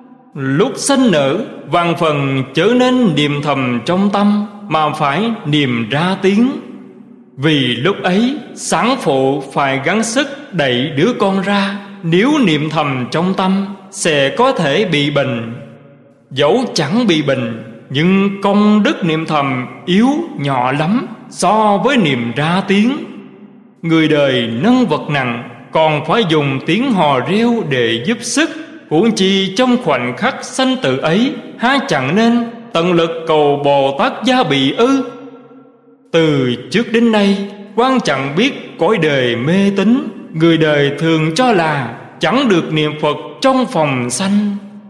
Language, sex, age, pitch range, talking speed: Vietnamese, male, 20-39, 145-230 Hz, 150 wpm